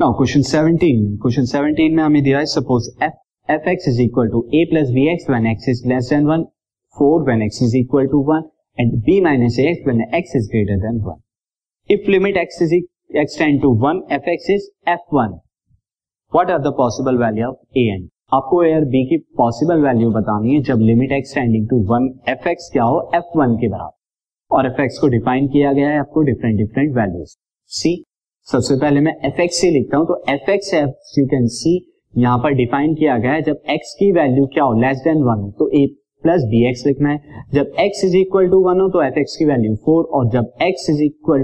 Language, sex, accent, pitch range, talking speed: Hindi, male, native, 120-160 Hz, 155 wpm